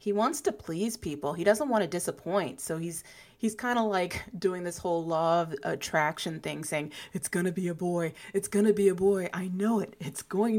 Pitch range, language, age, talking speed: 150-200 Hz, English, 20-39, 230 wpm